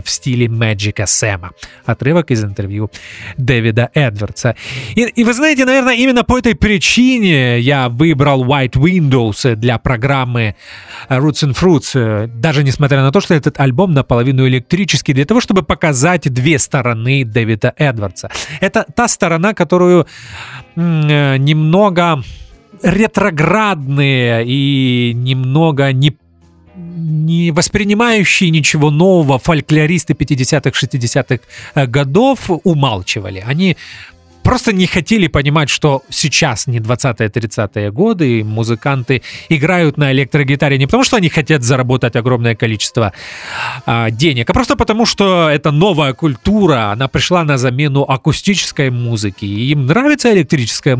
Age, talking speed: 30-49, 125 wpm